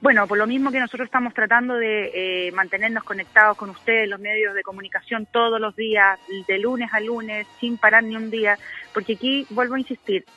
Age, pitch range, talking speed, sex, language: 30-49, 205-260 Hz, 205 wpm, female, Spanish